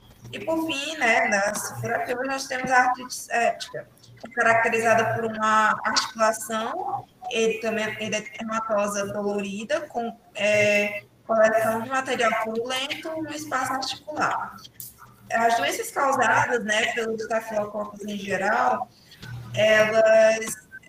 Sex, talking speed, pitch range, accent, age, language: female, 115 wpm, 215-245 Hz, Brazilian, 20-39, Portuguese